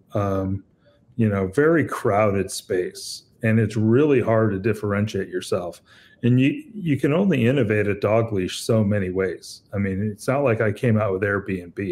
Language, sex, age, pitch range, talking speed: English, male, 40-59, 100-115 Hz, 175 wpm